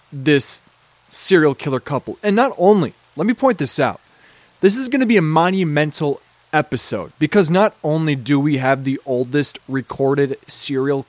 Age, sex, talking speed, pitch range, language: 20-39, male, 160 wpm, 135-170 Hz, English